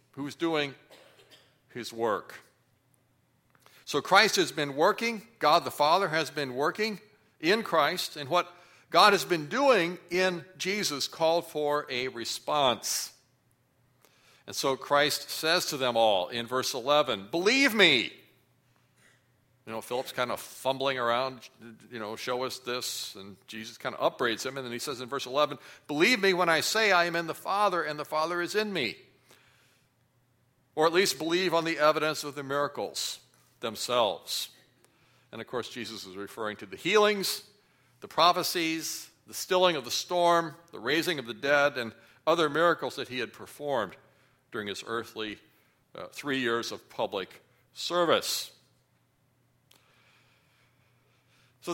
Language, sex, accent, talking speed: English, male, American, 150 wpm